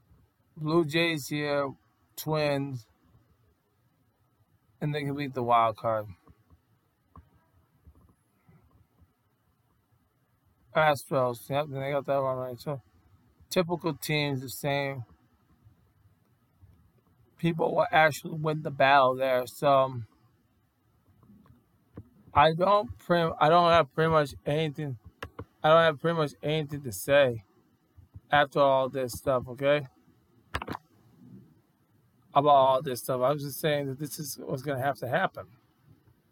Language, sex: English, male